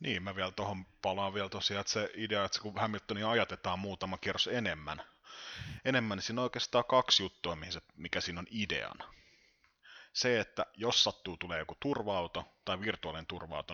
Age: 30-49